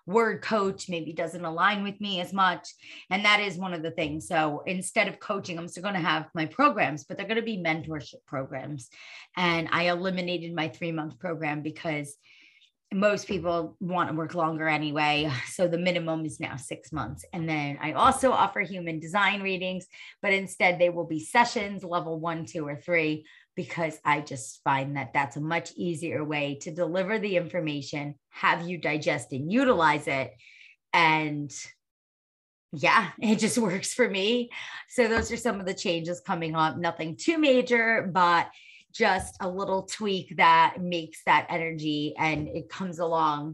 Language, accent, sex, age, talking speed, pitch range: English, American, female, 30-49, 175 wpm, 155-200 Hz